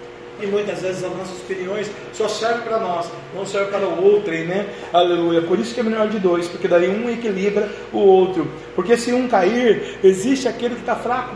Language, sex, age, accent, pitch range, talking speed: Portuguese, male, 40-59, Brazilian, 195-215 Hz, 210 wpm